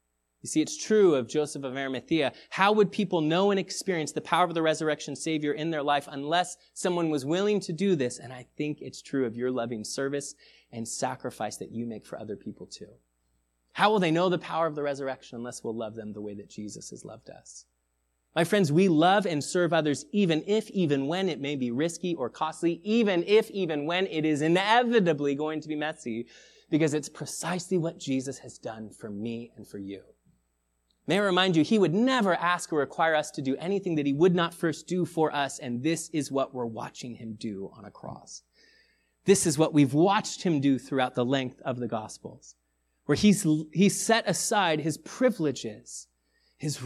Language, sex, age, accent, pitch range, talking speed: English, male, 30-49, American, 115-175 Hz, 205 wpm